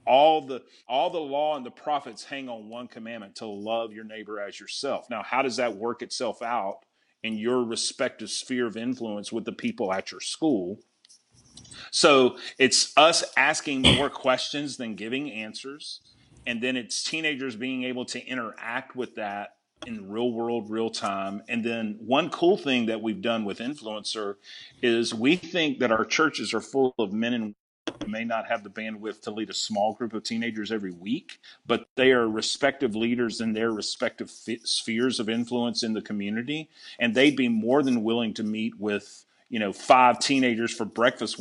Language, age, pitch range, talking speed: English, 40-59, 110-130 Hz, 185 wpm